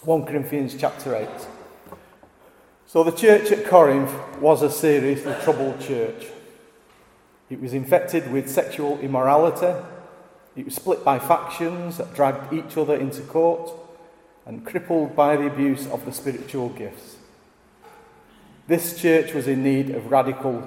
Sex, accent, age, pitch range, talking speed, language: male, British, 30-49, 135-160 Hz, 135 wpm, English